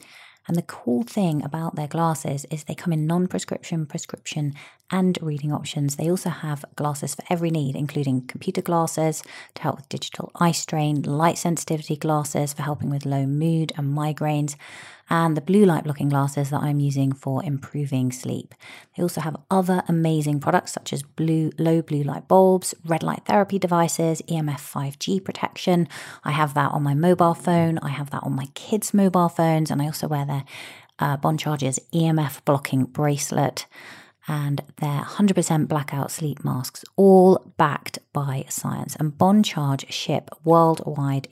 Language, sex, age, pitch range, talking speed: English, female, 30-49, 145-170 Hz, 165 wpm